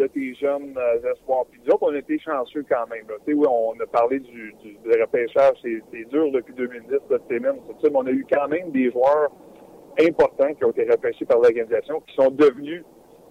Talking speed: 205 wpm